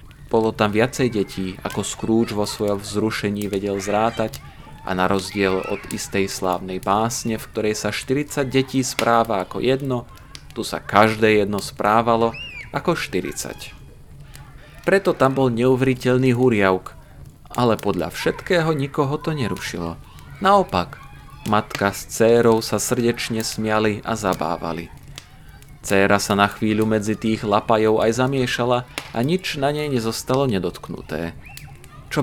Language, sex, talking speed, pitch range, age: Slovak, male, 130 wpm, 100-125 Hz, 30-49